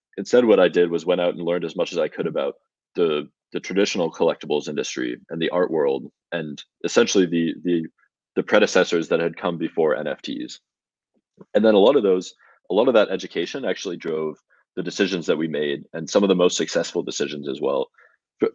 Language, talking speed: Italian, 205 wpm